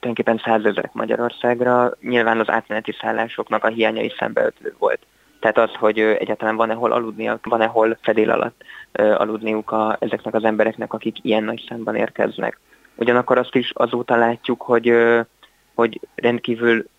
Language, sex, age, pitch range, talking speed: Hungarian, male, 20-39, 110-120 Hz, 140 wpm